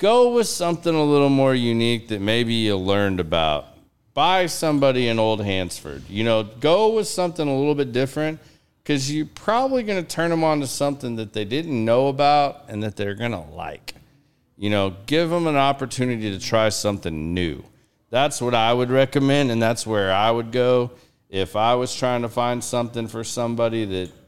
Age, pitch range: 40-59, 100-125 Hz